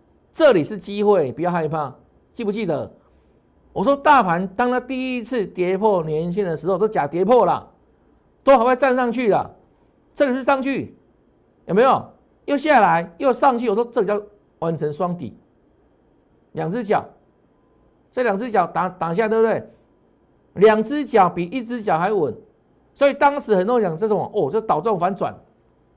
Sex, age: male, 50-69